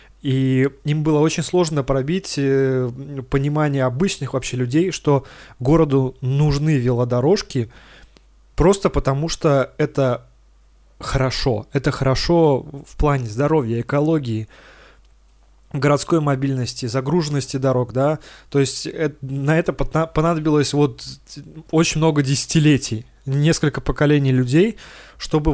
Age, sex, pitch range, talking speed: 20-39, male, 130-155 Hz, 100 wpm